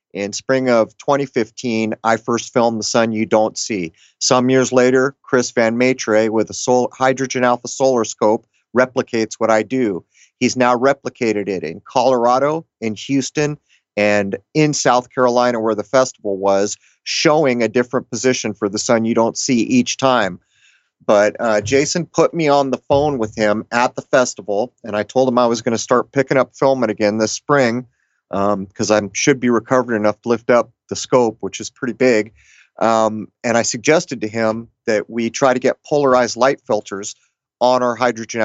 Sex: male